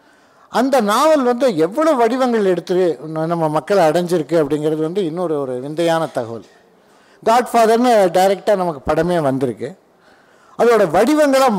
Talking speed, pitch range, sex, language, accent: 115 wpm, 155-215 Hz, male, Tamil, native